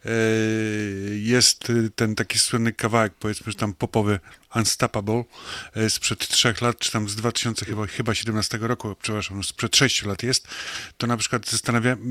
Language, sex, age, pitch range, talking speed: Polish, male, 30-49, 110-125 Hz, 150 wpm